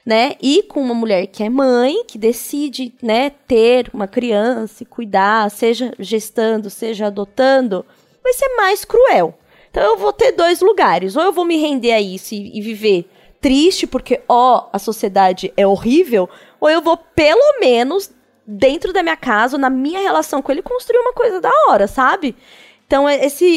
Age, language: 20-39, Portuguese